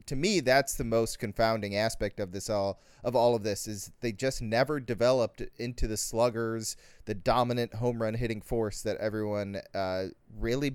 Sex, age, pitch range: male, 30-49, 110-130 Hz